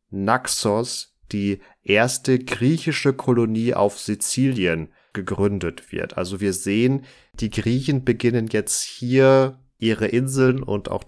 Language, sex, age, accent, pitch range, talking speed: German, male, 30-49, German, 100-125 Hz, 115 wpm